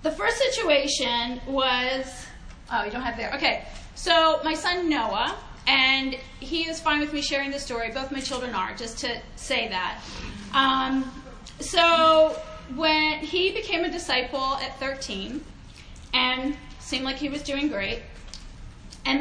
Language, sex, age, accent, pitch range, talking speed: English, female, 30-49, American, 255-310 Hz, 150 wpm